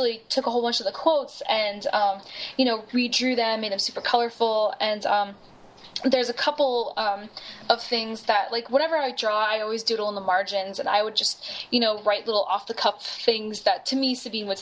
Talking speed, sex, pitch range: 220 wpm, female, 205-255 Hz